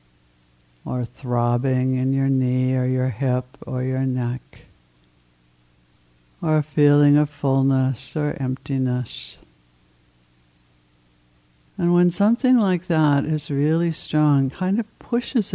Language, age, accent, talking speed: English, 60-79, American, 110 wpm